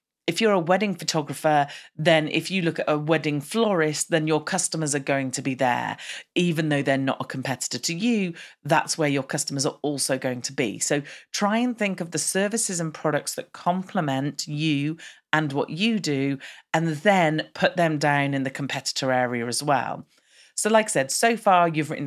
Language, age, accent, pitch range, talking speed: English, 40-59, British, 140-180 Hz, 200 wpm